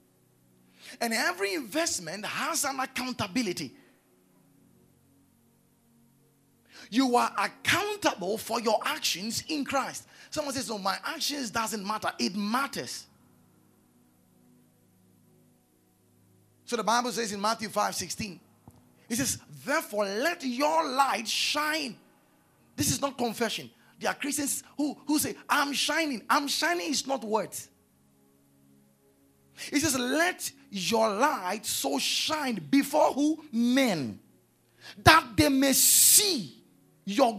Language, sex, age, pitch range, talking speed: English, male, 30-49, 205-300 Hz, 110 wpm